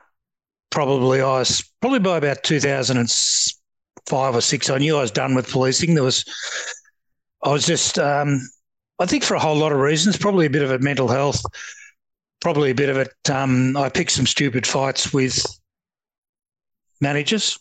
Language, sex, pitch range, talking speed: English, male, 130-150 Hz, 170 wpm